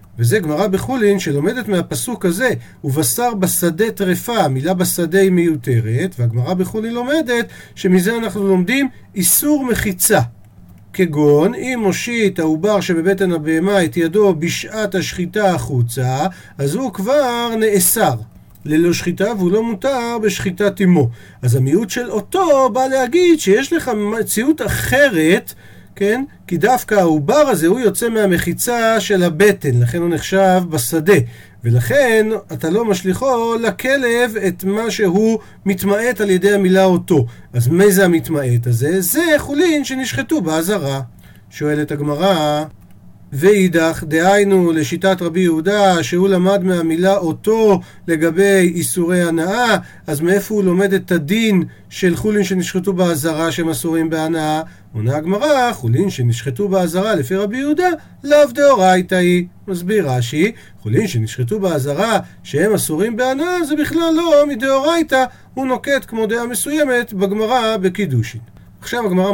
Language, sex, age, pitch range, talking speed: Hebrew, male, 50-69, 160-220 Hz, 130 wpm